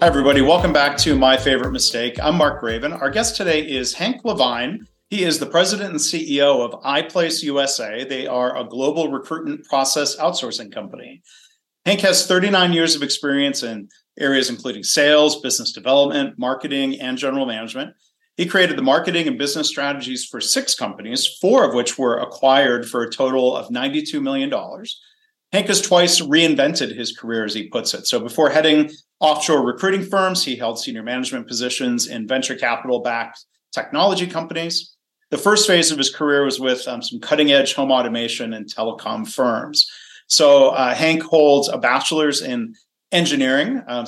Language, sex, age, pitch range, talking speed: English, male, 40-59, 125-180 Hz, 170 wpm